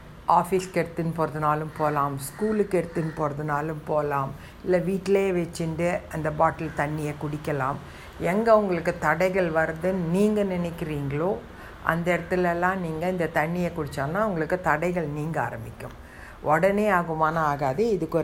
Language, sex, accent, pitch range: Tamil, female, native, 150-175 Hz